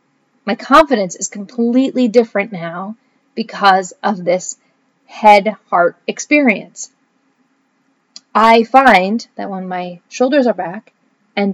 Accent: American